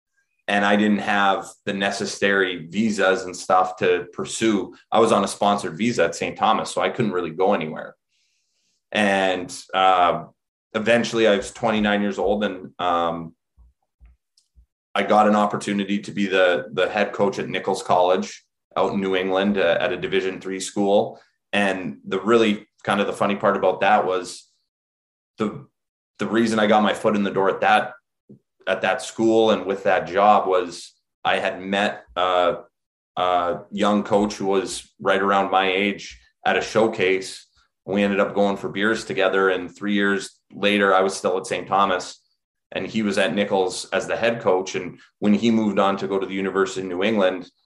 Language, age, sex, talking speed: English, 20-39, male, 185 wpm